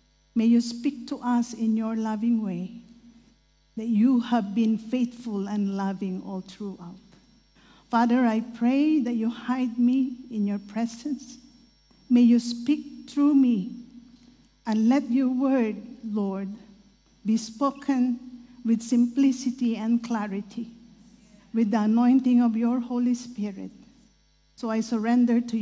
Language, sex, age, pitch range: English, female, 50-69, 210-250 Hz